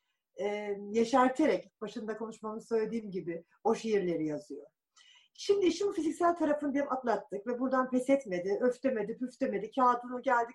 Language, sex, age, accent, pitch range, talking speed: Turkish, female, 50-69, native, 245-335 Hz, 120 wpm